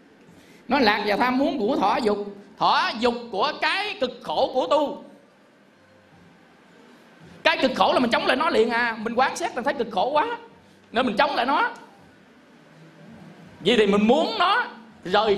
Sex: male